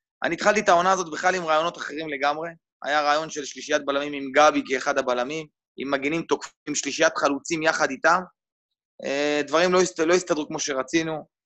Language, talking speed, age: Hebrew, 175 wpm, 20-39